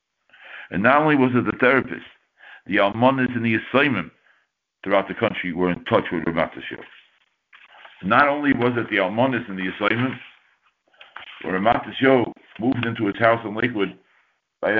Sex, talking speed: male, 150 wpm